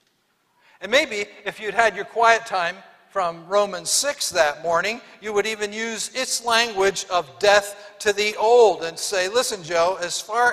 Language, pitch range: English, 170-225 Hz